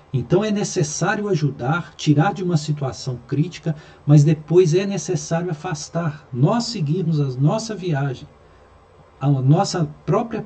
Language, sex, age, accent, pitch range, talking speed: Portuguese, male, 50-69, Brazilian, 125-170 Hz, 125 wpm